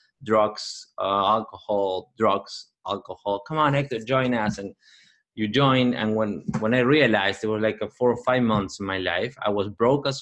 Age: 20-39